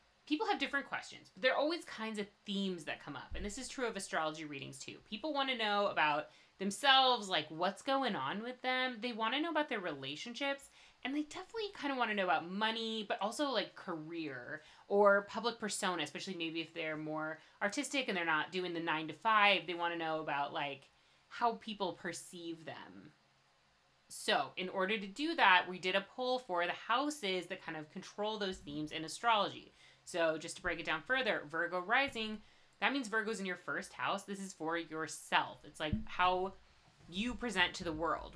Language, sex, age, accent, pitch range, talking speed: English, female, 30-49, American, 170-240 Hz, 205 wpm